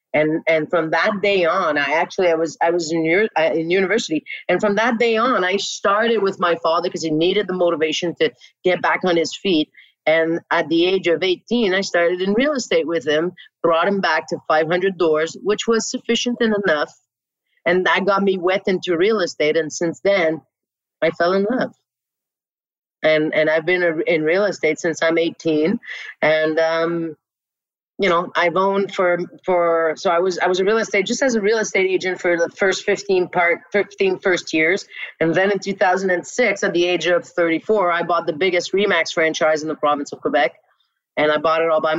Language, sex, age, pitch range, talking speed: English, female, 30-49, 160-195 Hz, 200 wpm